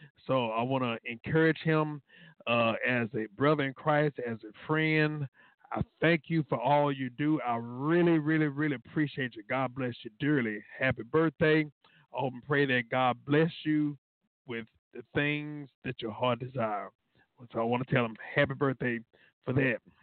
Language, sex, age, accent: English, male, 50-69, American